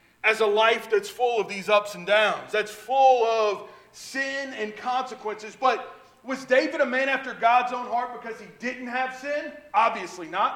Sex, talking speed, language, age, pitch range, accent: male, 180 wpm, English, 40-59, 210-265 Hz, American